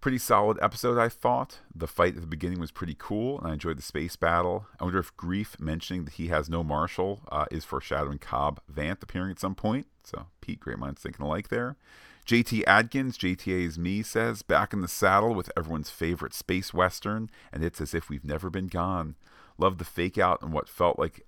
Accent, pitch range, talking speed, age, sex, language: American, 80-100 Hz, 210 wpm, 40-59, male, English